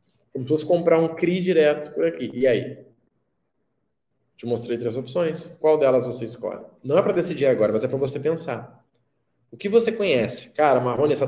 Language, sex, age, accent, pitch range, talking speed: Portuguese, male, 20-39, Brazilian, 130-180 Hz, 190 wpm